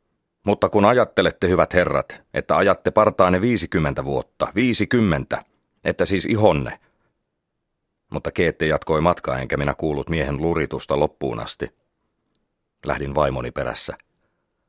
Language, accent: Finnish, native